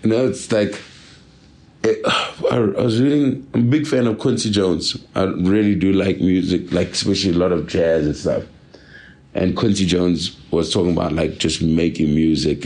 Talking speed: 190 wpm